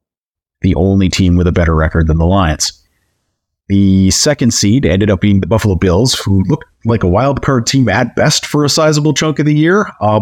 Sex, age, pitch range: male, 30-49, 95-130 Hz